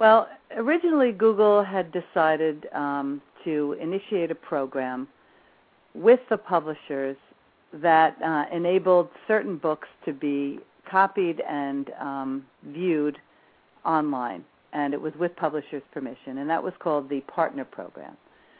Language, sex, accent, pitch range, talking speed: English, female, American, 145-185 Hz, 125 wpm